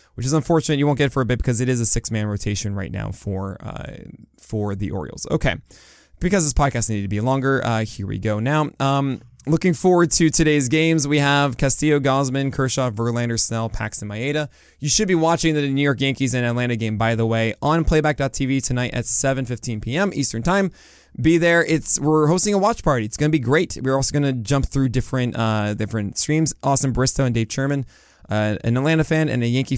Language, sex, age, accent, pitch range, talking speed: English, male, 20-39, American, 110-140 Hz, 220 wpm